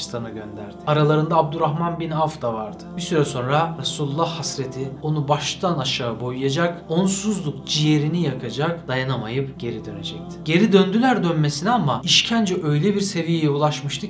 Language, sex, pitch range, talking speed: Turkish, male, 130-165 Hz, 130 wpm